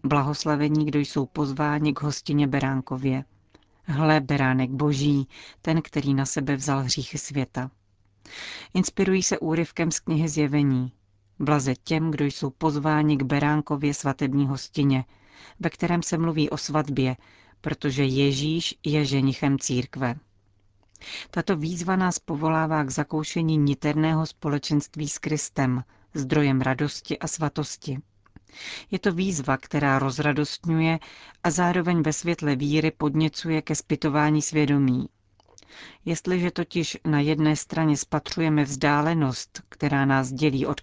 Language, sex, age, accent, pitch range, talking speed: Czech, female, 40-59, native, 135-160 Hz, 120 wpm